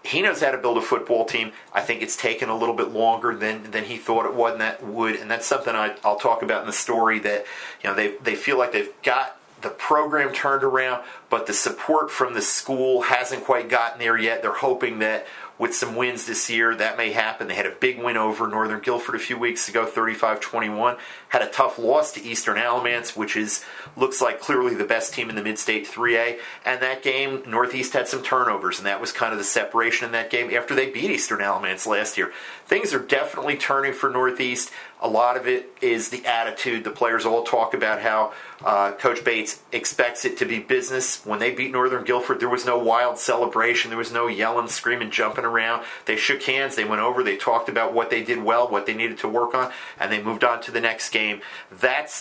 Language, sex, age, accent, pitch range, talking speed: English, male, 40-59, American, 115-130 Hz, 230 wpm